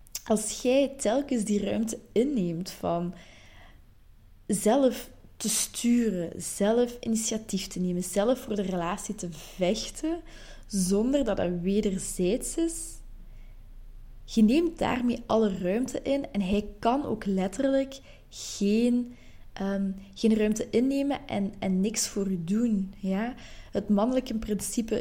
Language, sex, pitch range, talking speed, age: Dutch, female, 180-225 Hz, 120 wpm, 20-39